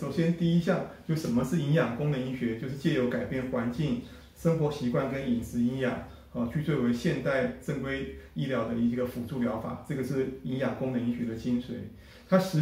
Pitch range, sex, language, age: 120-150 Hz, male, Chinese, 30-49